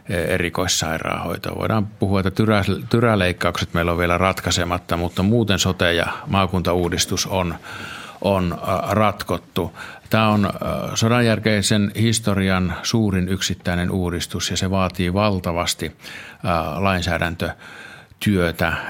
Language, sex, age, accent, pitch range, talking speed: Finnish, male, 50-69, native, 90-100 Hz, 90 wpm